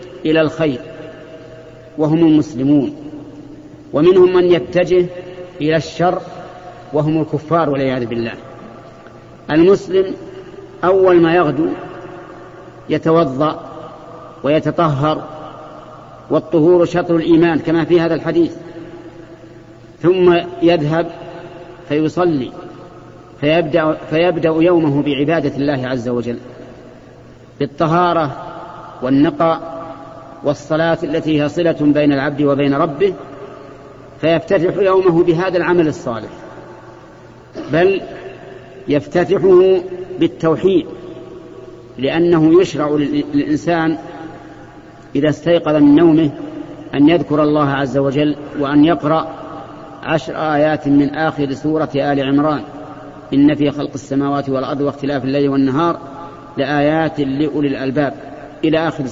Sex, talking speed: male, 90 wpm